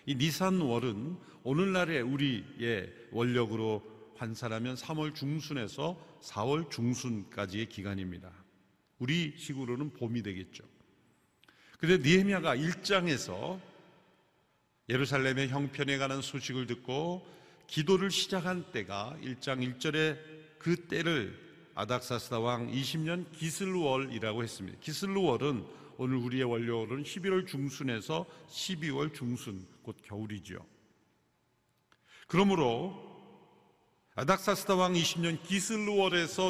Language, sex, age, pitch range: Korean, male, 50-69, 125-180 Hz